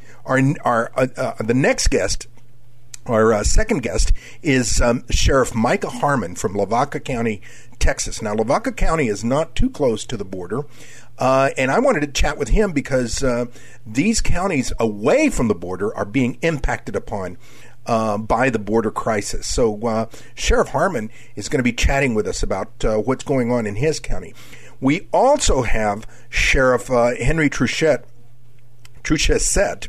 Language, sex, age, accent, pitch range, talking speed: English, male, 50-69, American, 120-145 Hz, 165 wpm